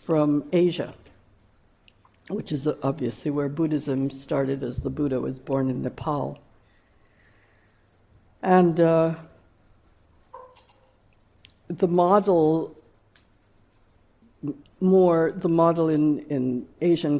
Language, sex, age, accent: English, female, 60-79, American